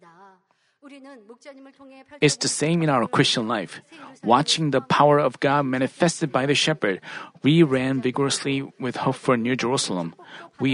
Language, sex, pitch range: Korean, male, 150-205 Hz